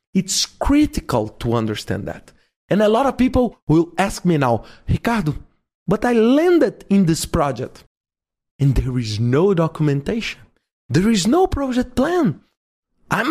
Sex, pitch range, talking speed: male, 155-230 Hz, 145 wpm